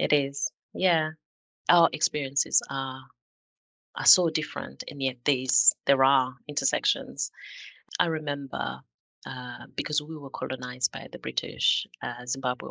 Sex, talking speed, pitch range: female, 125 wpm, 120-140 Hz